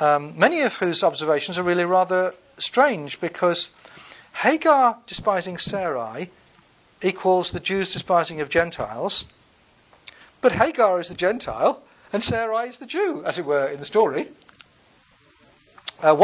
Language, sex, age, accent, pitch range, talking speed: English, male, 50-69, British, 150-190 Hz, 135 wpm